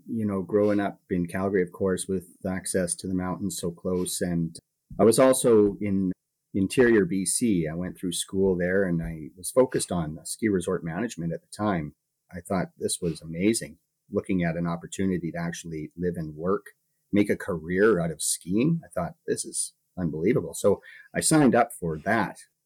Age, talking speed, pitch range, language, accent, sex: 30-49, 185 wpm, 85-100 Hz, English, American, male